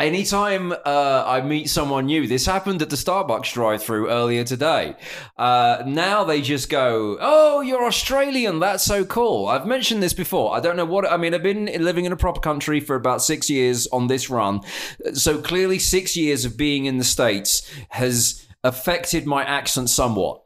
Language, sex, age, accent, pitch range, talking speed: English, male, 20-39, British, 125-170 Hz, 190 wpm